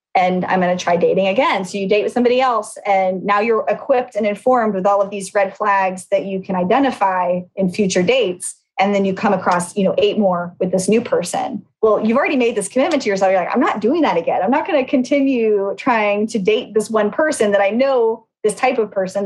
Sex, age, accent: female, 20-39, American